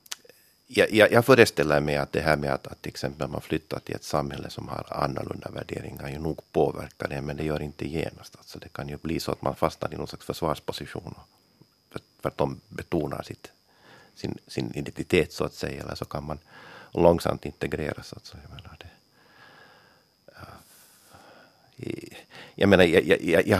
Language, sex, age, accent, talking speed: Finnish, male, 50-69, native, 165 wpm